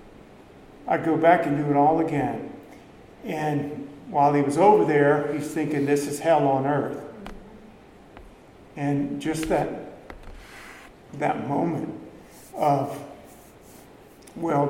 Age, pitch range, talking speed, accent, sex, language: 50-69, 135-155 Hz, 115 wpm, American, male, English